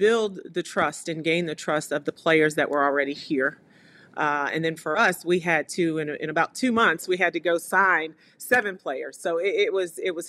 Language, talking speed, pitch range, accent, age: English, 220 wpm, 150-175 Hz, American, 40-59